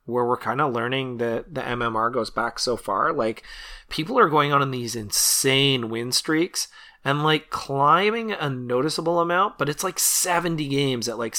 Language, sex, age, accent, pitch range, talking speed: English, male, 30-49, American, 115-140 Hz, 185 wpm